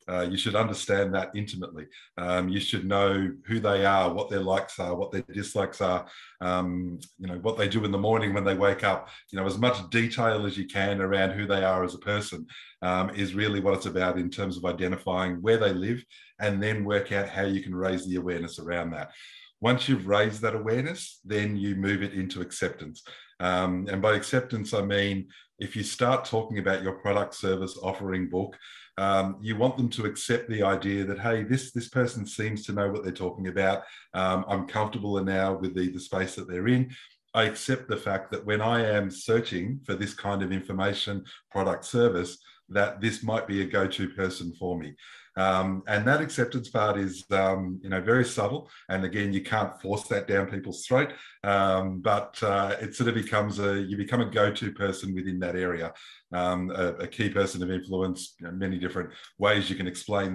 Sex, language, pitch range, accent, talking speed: male, English, 95-105 Hz, Australian, 205 wpm